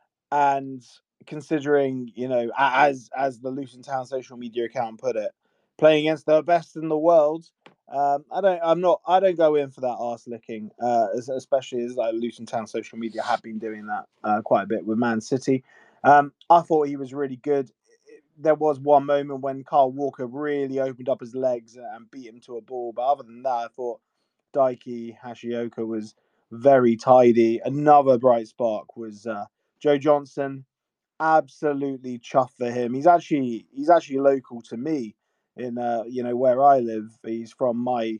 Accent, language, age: British, English, 20-39